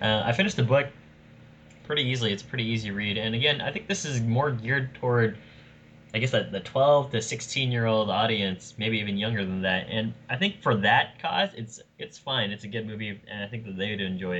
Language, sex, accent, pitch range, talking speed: English, male, American, 100-120 Hz, 240 wpm